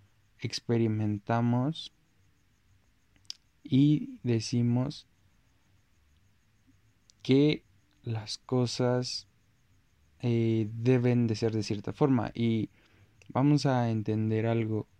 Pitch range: 100-120 Hz